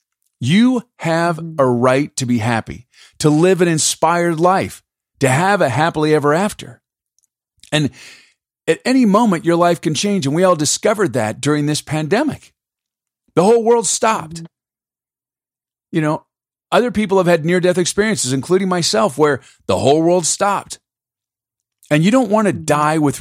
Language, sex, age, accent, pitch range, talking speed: English, male, 40-59, American, 130-180 Hz, 155 wpm